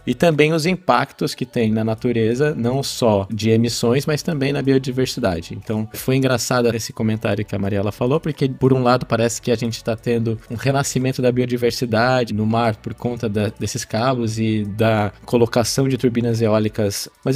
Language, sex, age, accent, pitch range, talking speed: Portuguese, male, 20-39, Brazilian, 110-130 Hz, 180 wpm